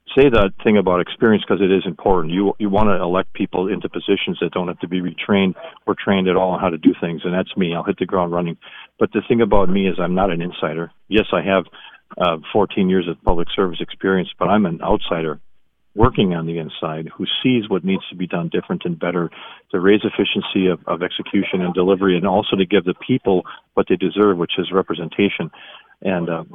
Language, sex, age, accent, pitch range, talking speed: English, male, 40-59, American, 85-100 Hz, 220 wpm